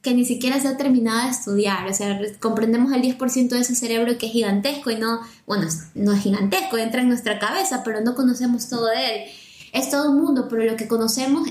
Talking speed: 225 wpm